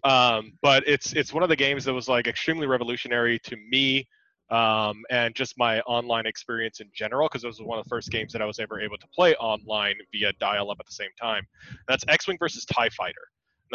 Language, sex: English, male